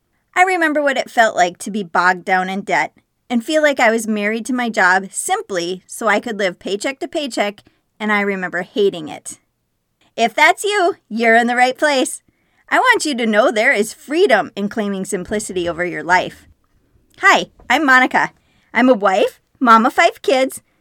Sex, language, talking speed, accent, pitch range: female, English, 190 wpm, American, 195-270 Hz